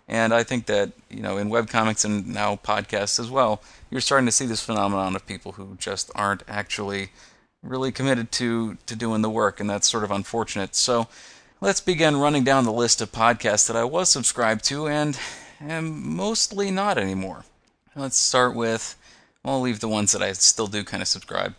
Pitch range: 100-115 Hz